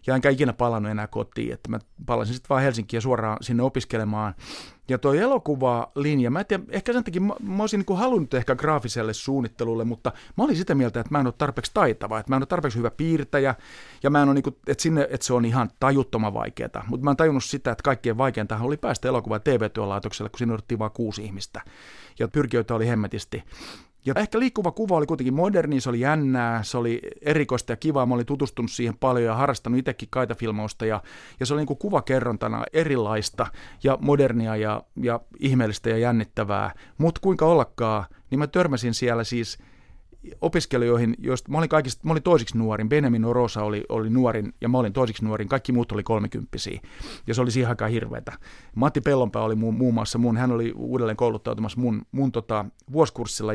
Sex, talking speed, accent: male, 195 wpm, native